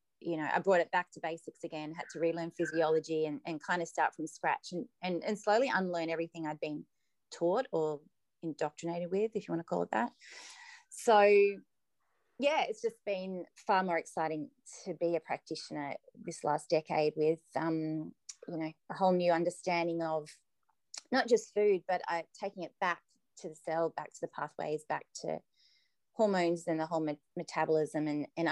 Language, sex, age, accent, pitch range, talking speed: English, female, 30-49, Australian, 160-185 Hz, 185 wpm